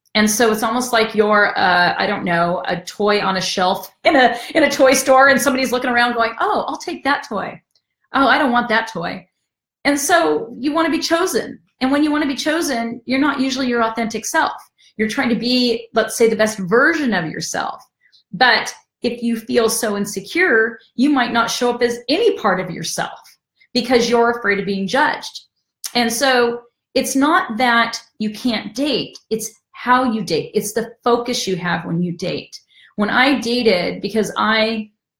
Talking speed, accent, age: 195 wpm, American, 40-59